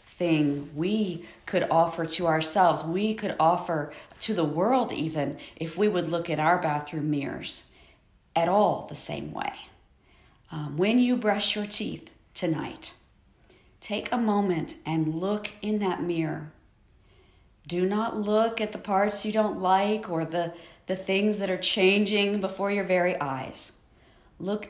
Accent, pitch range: American, 155-190 Hz